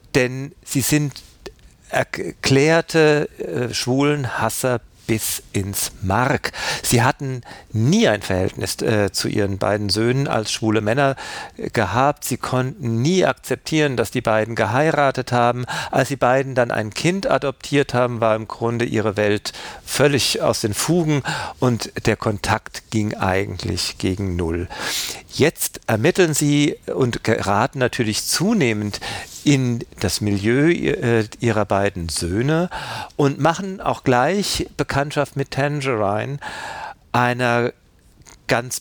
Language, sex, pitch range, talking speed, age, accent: German, male, 110-145 Hz, 120 wpm, 50-69, German